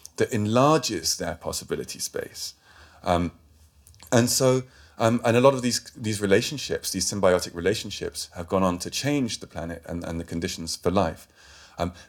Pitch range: 85-115 Hz